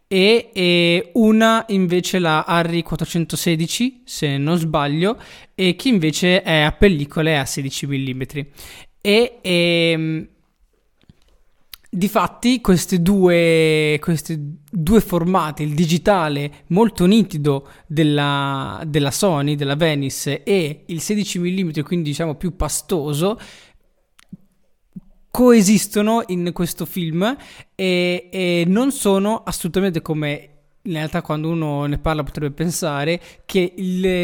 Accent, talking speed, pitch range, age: native, 110 wpm, 145-190 Hz, 20-39